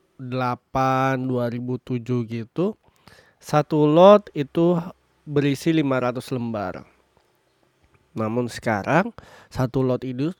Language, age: Indonesian, 20-39